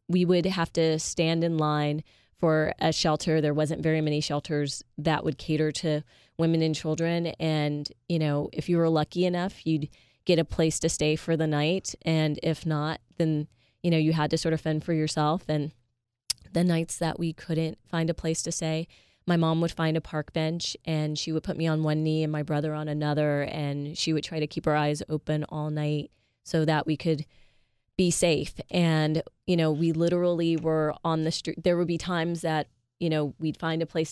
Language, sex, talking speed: English, female, 215 wpm